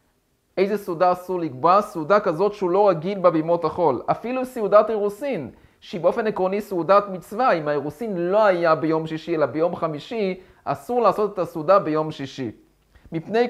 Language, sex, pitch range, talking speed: Hebrew, male, 155-205 Hz, 155 wpm